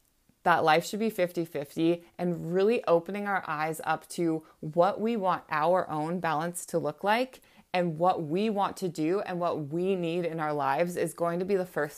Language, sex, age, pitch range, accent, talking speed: English, female, 20-39, 170-215 Hz, American, 205 wpm